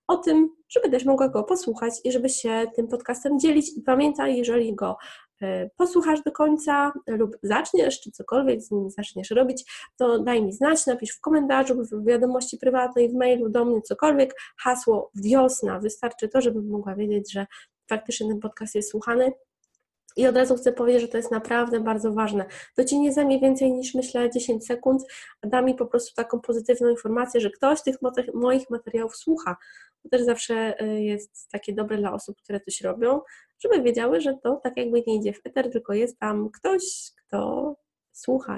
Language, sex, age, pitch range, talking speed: Polish, female, 20-39, 215-265 Hz, 180 wpm